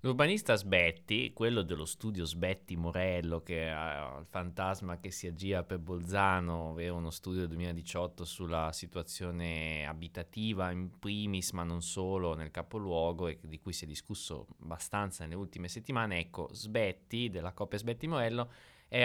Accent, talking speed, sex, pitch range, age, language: native, 145 wpm, male, 85-105 Hz, 20-39, Italian